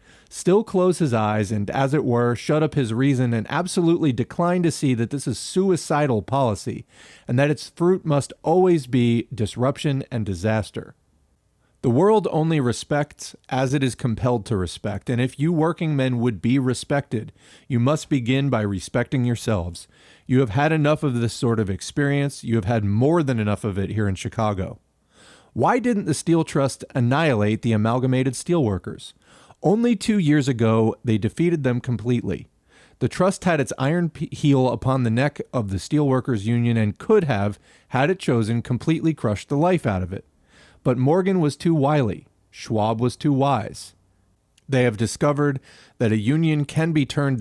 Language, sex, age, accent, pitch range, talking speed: English, male, 40-59, American, 110-150 Hz, 175 wpm